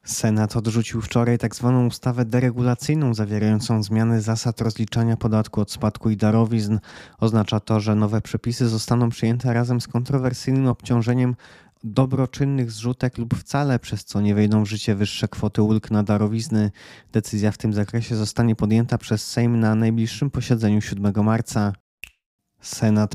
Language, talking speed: Polish, 145 wpm